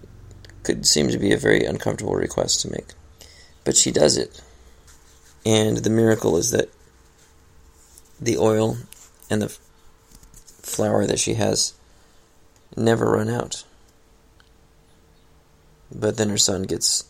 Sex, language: male, English